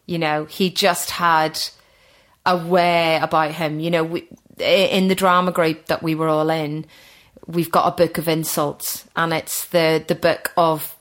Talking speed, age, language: 175 wpm, 30-49, English